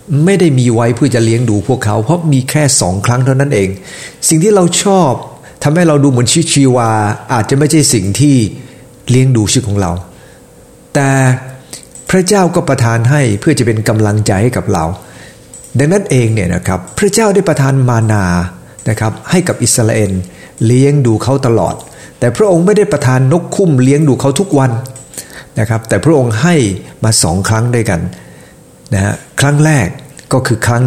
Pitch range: 110-150 Hz